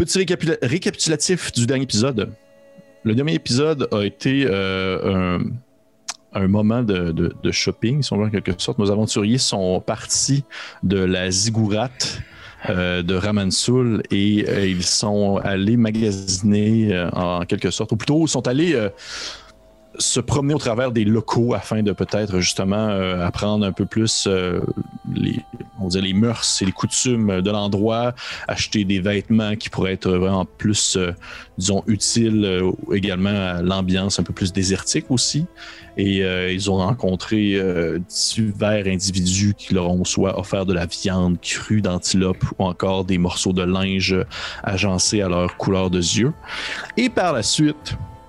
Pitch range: 95-110 Hz